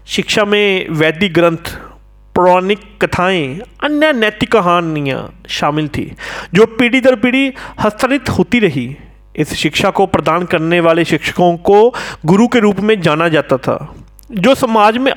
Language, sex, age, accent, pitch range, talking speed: Hindi, male, 40-59, native, 165-235 Hz, 140 wpm